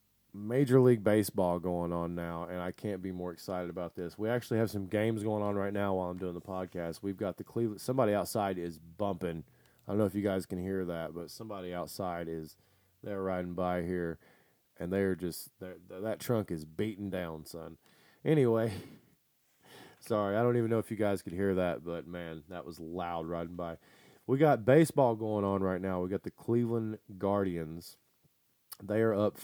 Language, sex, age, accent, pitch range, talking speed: English, male, 20-39, American, 90-110 Hz, 200 wpm